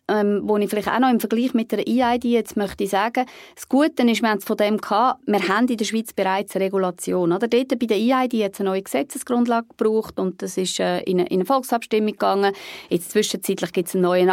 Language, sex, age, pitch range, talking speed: German, female, 30-49, 195-245 Hz, 240 wpm